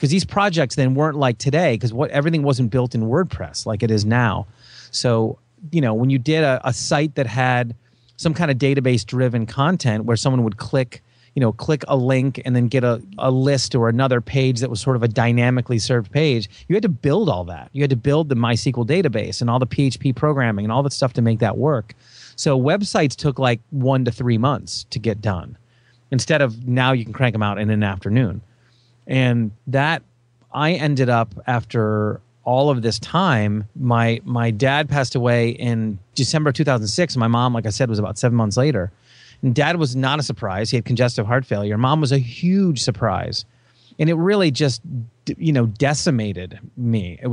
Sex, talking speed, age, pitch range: male, 205 wpm, 30-49, 115-140 Hz